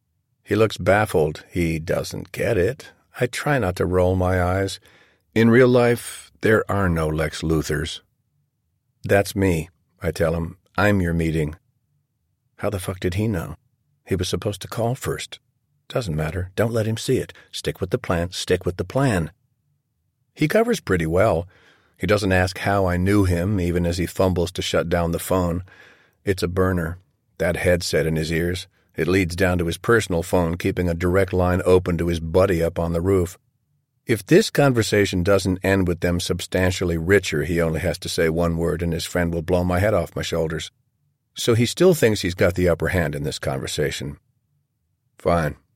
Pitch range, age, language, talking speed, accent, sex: 85-110 Hz, 50-69, English, 190 wpm, American, male